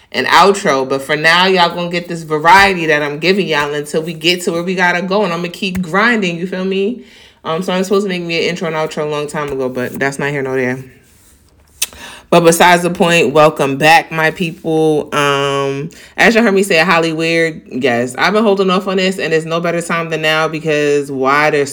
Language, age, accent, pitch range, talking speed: English, 30-49, American, 140-175 Hz, 230 wpm